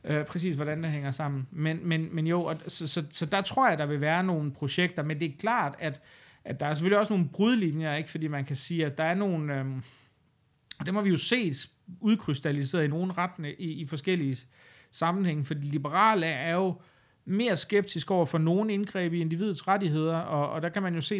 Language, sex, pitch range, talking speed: Danish, male, 140-170 Hz, 220 wpm